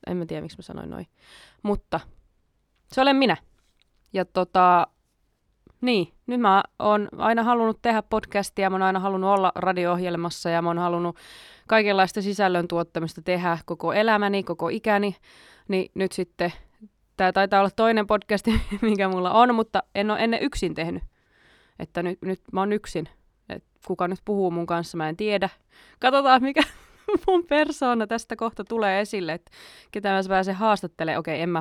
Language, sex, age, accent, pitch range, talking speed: Finnish, female, 20-39, native, 170-215 Hz, 165 wpm